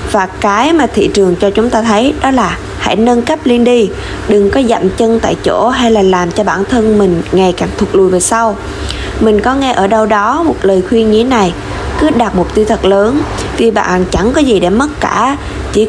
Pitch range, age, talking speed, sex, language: 195-245 Hz, 20-39, 230 wpm, female, Vietnamese